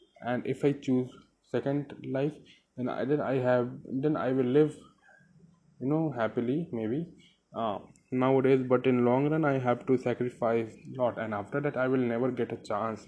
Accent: native